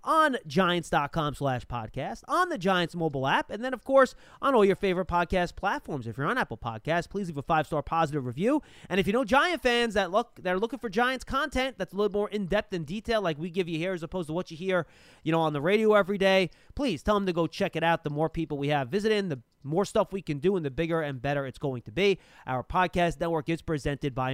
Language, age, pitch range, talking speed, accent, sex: English, 30-49, 160-225 Hz, 260 wpm, American, male